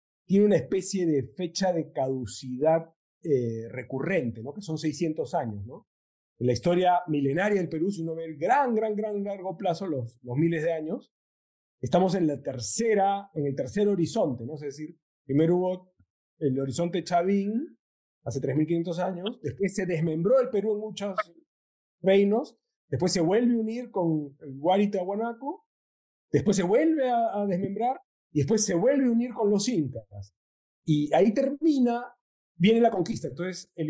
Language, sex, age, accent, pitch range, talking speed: Spanish, male, 40-59, Argentinian, 150-205 Hz, 165 wpm